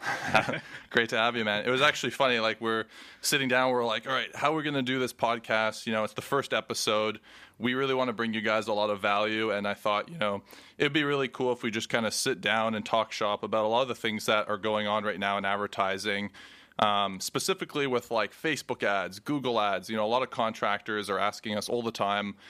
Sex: male